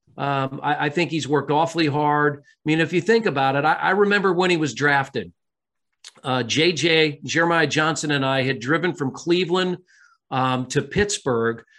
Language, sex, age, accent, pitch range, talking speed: English, male, 40-59, American, 135-165 Hz, 180 wpm